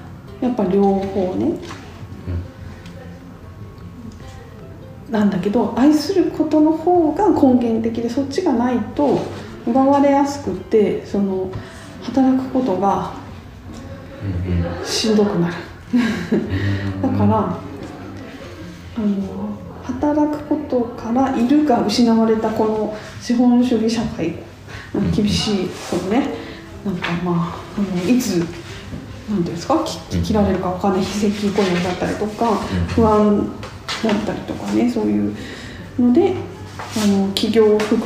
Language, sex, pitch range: Japanese, female, 175-260 Hz